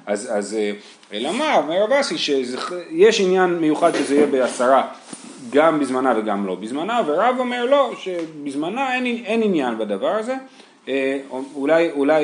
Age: 30-49